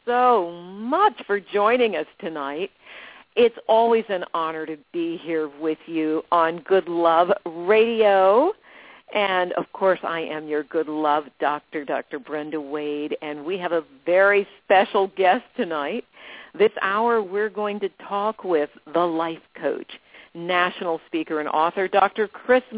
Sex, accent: female, American